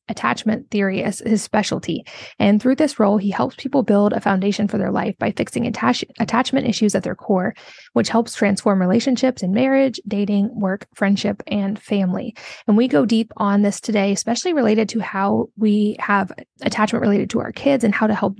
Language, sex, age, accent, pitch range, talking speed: English, female, 20-39, American, 195-225 Hz, 190 wpm